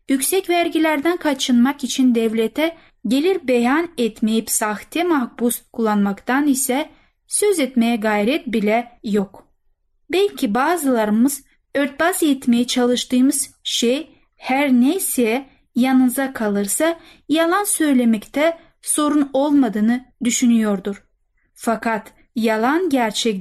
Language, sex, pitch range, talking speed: Turkish, female, 225-300 Hz, 90 wpm